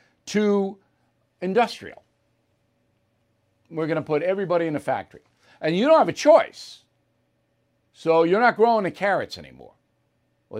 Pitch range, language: 120-180 Hz, English